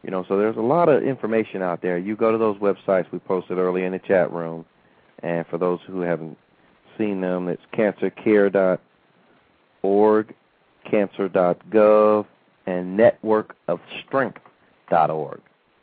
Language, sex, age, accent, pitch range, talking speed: English, male, 40-59, American, 85-105 Hz, 130 wpm